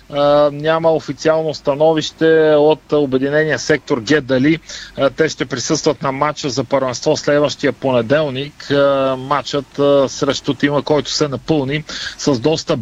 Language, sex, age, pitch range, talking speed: Bulgarian, male, 40-59, 135-155 Hz, 110 wpm